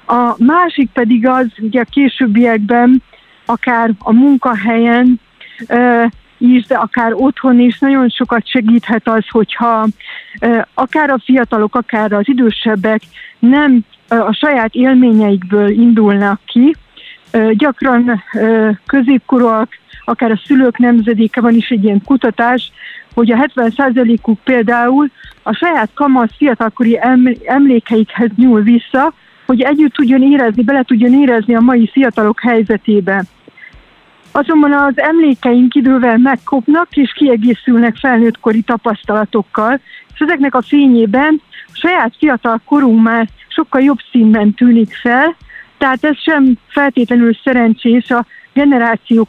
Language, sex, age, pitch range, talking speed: Hungarian, female, 50-69, 230-265 Hz, 115 wpm